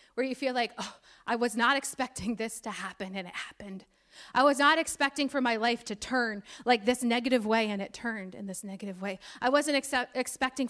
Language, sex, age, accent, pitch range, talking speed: English, female, 30-49, American, 220-270 Hz, 205 wpm